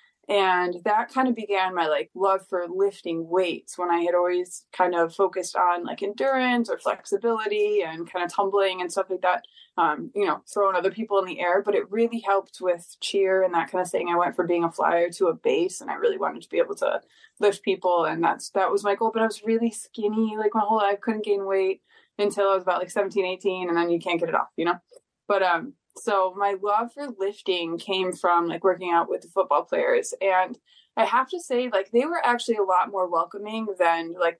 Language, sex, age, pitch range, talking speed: English, female, 20-39, 180-225 Hz, 235 wpm